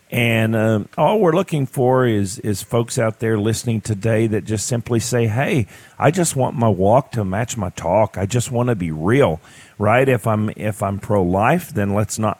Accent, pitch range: American, 100-120 Hz